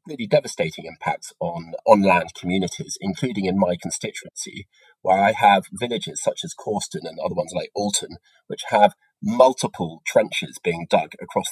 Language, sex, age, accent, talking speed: English, male, 30-49, British, 155 wpm